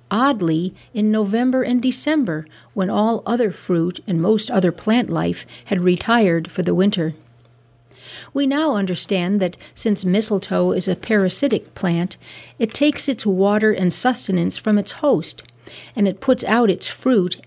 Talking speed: 150 wpm